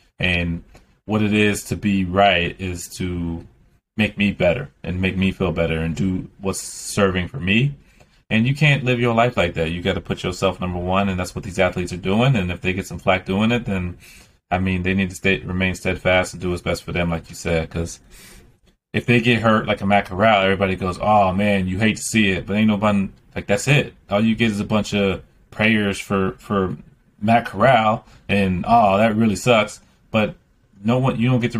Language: English